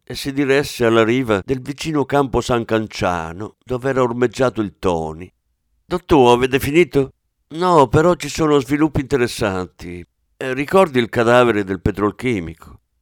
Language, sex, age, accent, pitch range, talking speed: Italian, male, 50-69, native, 90-145 Hz, 135 wpm